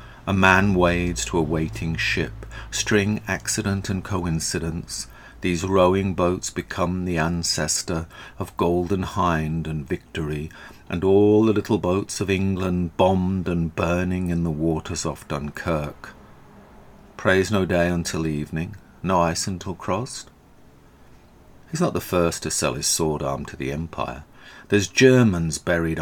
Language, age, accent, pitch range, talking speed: English, 50-69, British, 80-95 Hz, 140 wpm